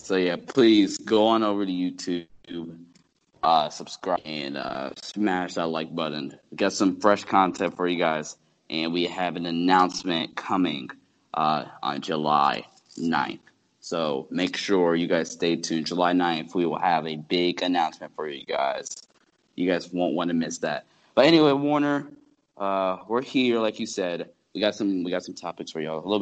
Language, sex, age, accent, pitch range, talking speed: English, male, 20-39, American, 80-100 Hz, 180 wpm